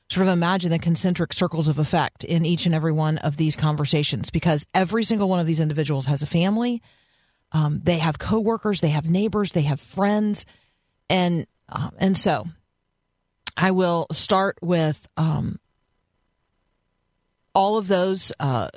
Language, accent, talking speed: English, American, 155 wpm